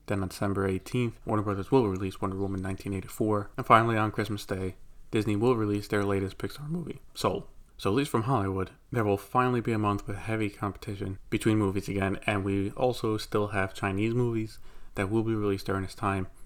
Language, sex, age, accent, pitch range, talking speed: English, male, 20-39, American, 100-115 Hz, 200 wpm